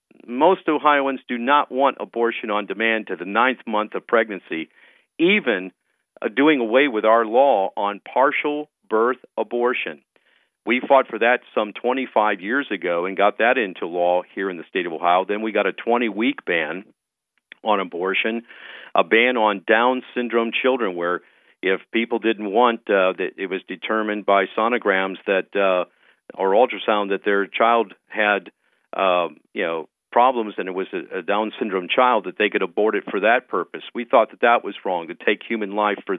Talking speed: 180 wpm